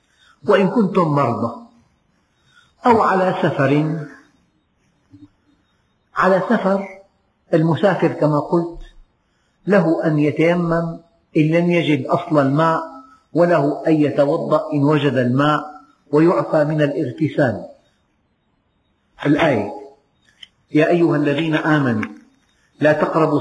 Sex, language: male, Arabic